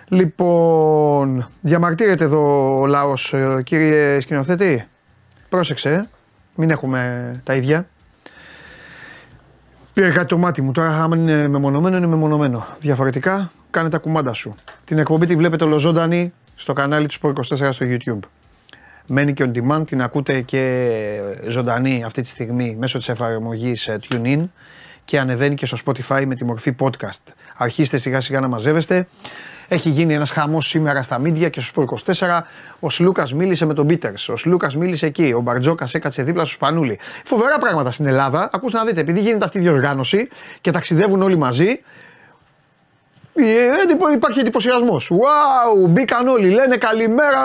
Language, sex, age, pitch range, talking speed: Greek, male, 30-49, 135-185 Hz, 150 wpm